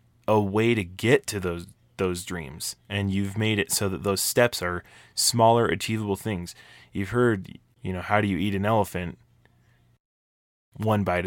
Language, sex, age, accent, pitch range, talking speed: English, male, 20-39, American, 95-115 Hz, 170 wpm